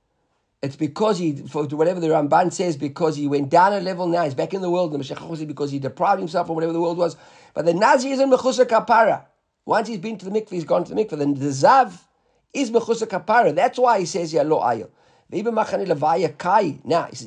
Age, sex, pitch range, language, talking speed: 50-69, male, 150-215 Hz, English, 225 wpm